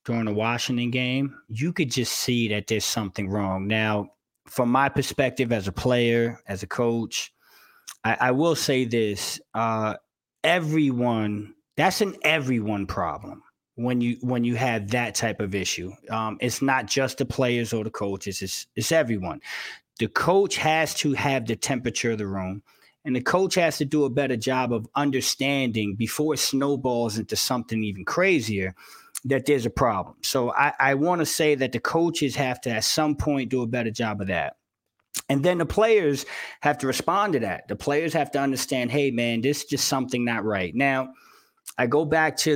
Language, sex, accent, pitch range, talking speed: English, male, American, 110-140 Hz, 190 wpm